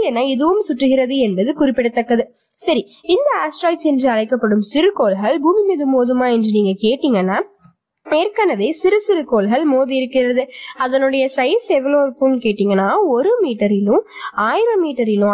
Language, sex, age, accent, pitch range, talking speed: Tamil, female, 20-39, native, 240-335 Hz, 100 wpm